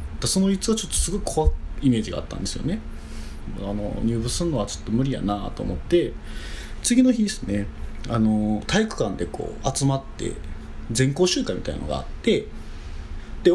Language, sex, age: Japanese, male, 20-39